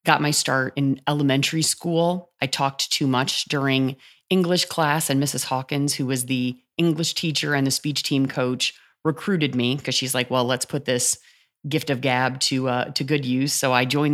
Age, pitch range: 30-49, 130-150 Hz